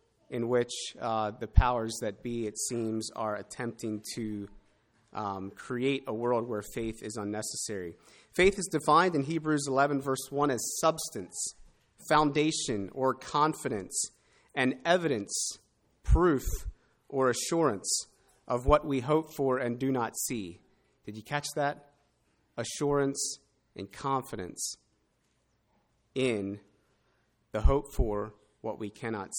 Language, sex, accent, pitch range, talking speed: English, male, American, 115-145 Hz, 125 wpm